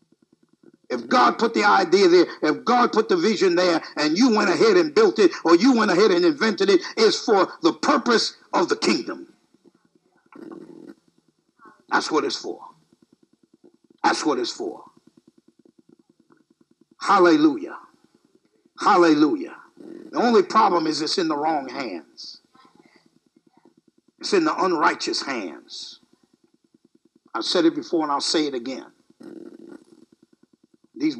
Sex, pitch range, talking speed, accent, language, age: male, 295-340 Hz, 130 wpm, American, English, 60-79